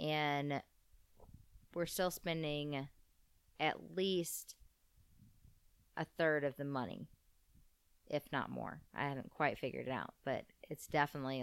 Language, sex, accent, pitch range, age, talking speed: English, female, American, 130-155 Hz, 20-39, 120 wpm